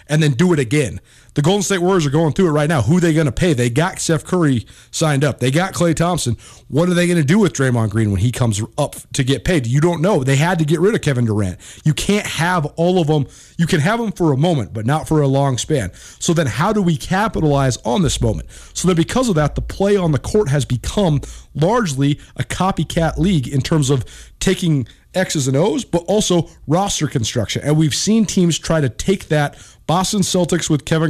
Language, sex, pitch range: English, male, 135-175 Hz